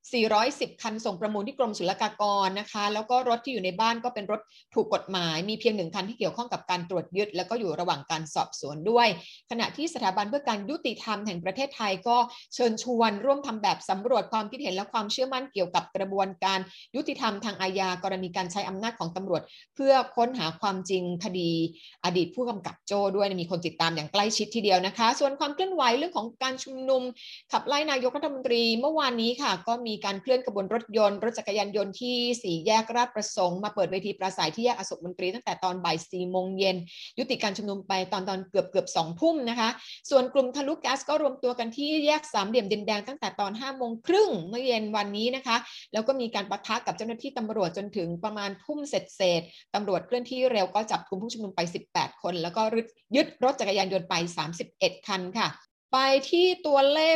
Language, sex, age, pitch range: Thai, female, 30-49, 190-250 Hz